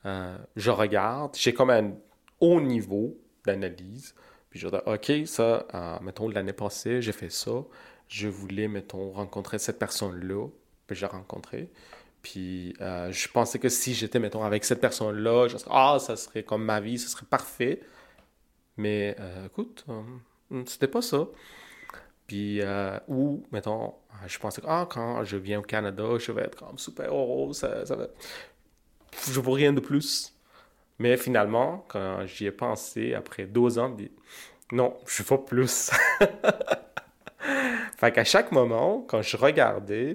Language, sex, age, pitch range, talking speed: French, male, 30-49, 100-130 Hz, 160 wpm